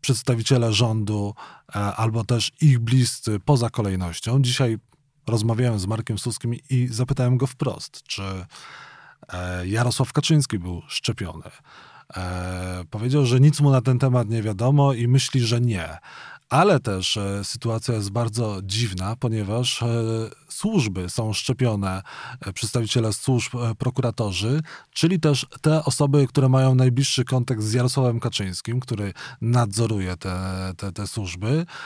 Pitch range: 110-135 Hz